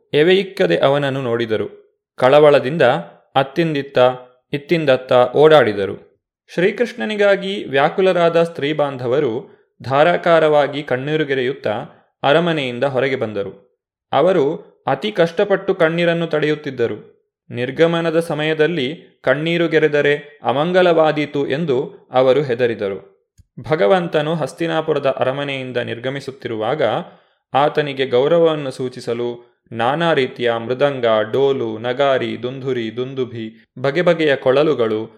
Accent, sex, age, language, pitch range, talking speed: native, male, 20-39, Kannada, 130-165 Hz, 75 wpm